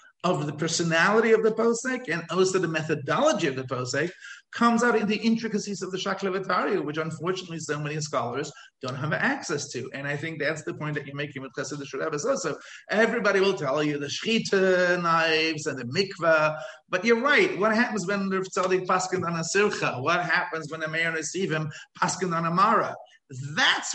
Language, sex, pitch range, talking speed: English, male, 140-185 Hz, 185 wpm